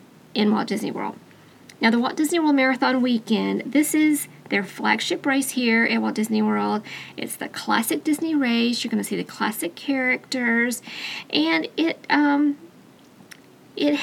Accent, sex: American, female